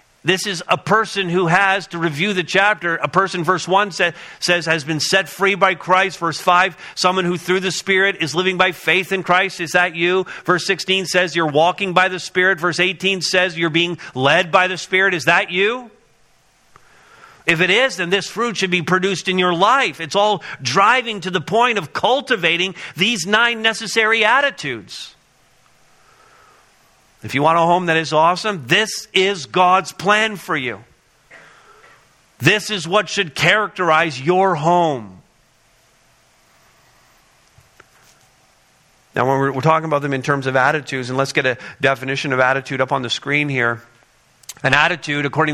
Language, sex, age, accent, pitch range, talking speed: English, male, 50-69, American, 145-190 Hz, 170 wpm